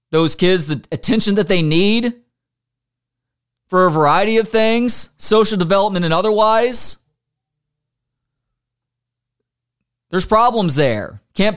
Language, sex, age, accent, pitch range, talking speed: English, male, 30-49, American, 125-200 Hz, 105 wpm